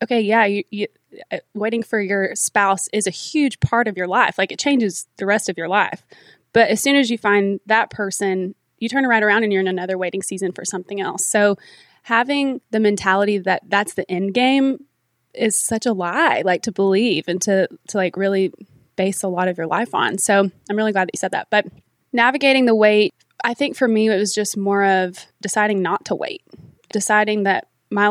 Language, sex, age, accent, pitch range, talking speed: English, female, 20-39, American, 190-225 Hz, 210 wpm